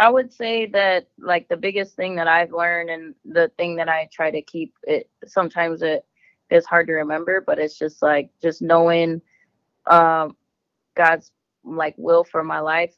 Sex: female